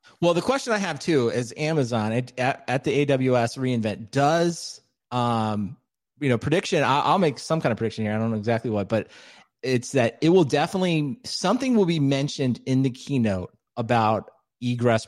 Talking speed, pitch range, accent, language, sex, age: 180 wpm, 115-160 Hz, American, English, male, 30-49